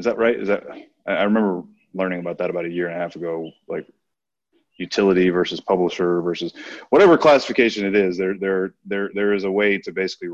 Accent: American